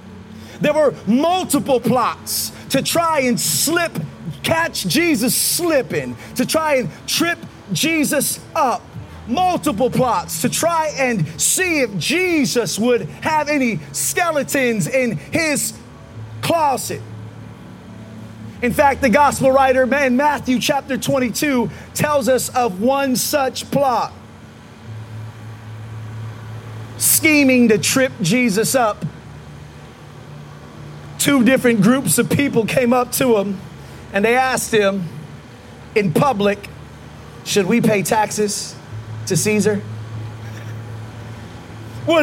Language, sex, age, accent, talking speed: English, male, 30-49, American, 105 wpm